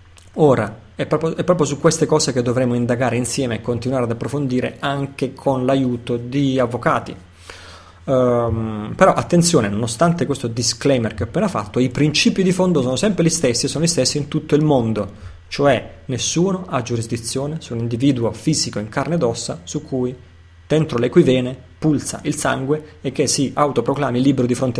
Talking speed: 170 wpm